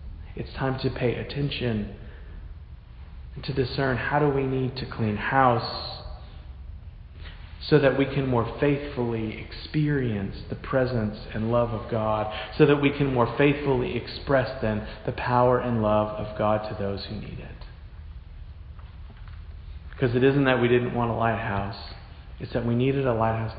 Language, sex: English, male